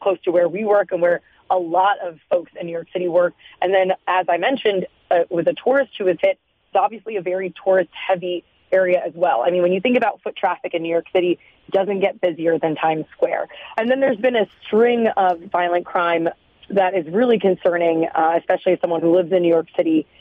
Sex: female